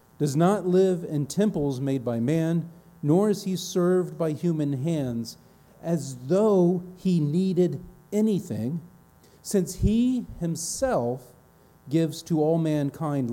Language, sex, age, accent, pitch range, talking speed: English, male, 40-59, American, 135-185 Hz, 120 wpm